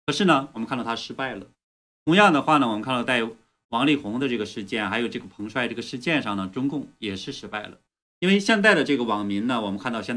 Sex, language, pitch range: male, Chinese, 105-145 Hz